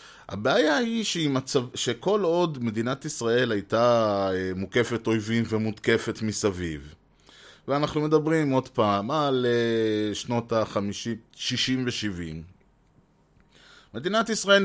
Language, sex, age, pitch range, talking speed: Hebrew, male, 20-39, 105-130 Hz, 90 wpm